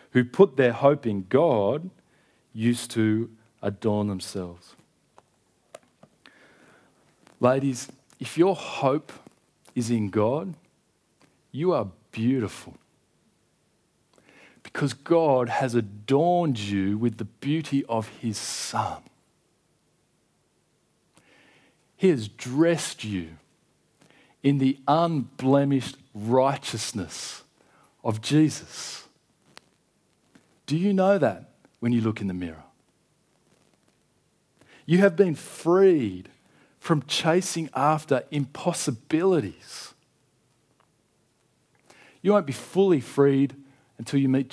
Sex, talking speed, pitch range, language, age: male, 90 wpm, 115-160 Hz, English, 40-59